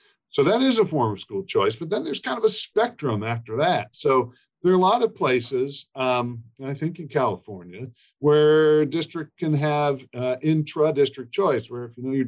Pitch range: 115-155 Hz